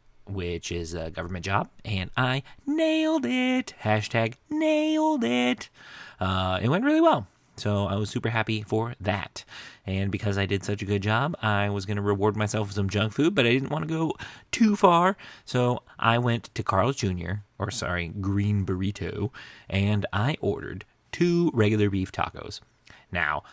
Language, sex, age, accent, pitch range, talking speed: English, male, 30-49, American, 95-125 Hz, 175 wpm